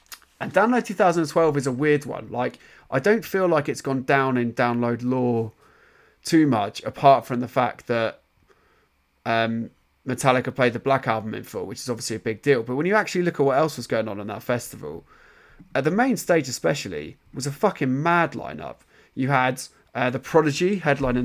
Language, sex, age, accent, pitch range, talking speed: English, male, 20-39, British, 120-140 Hz, 200 wpm